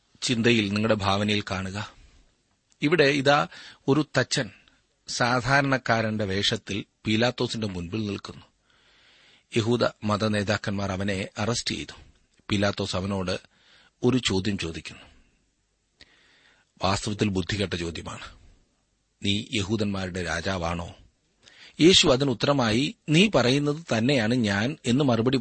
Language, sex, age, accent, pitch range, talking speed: Malayalam, male, 30-49, native, 100-135 Hz, 90 wpm